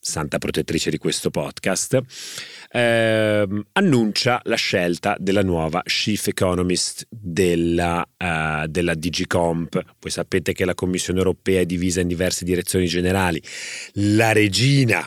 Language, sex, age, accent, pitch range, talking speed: Italian, male, 30-49, native, 85-105 Hz, 125 wpm